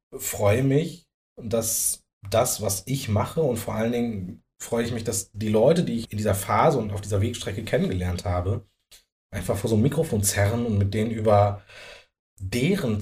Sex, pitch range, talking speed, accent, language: male, 100-120 Hz, 180 wpm, German, German